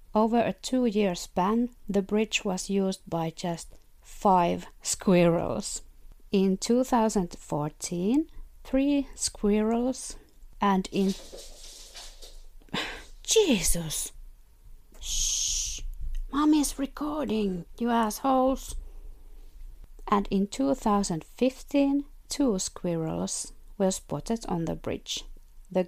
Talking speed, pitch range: 80 wpm, 175-230 Hz